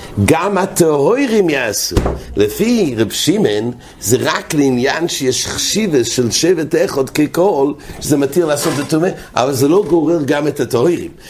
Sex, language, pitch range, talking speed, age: male, English, 120-165 Hz, 140 wpm, 60-79